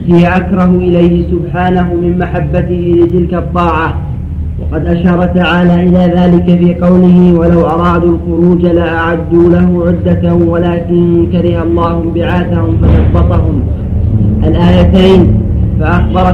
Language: Arabic